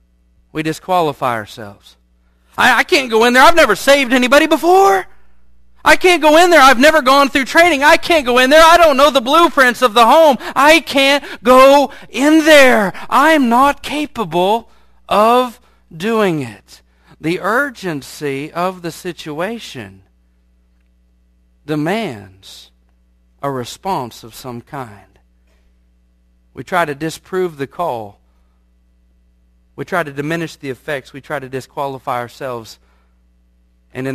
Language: English